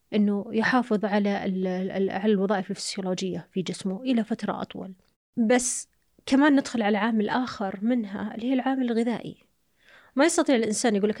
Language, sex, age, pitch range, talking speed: Arabic, female, 30-49, 195-235 Hz, 145 wpm